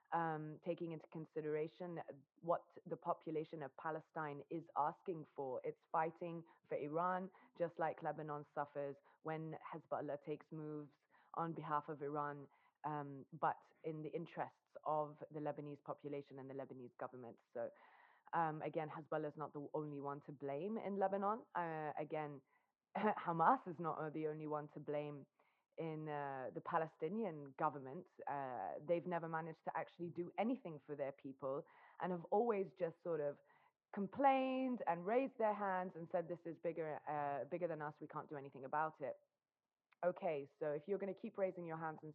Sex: female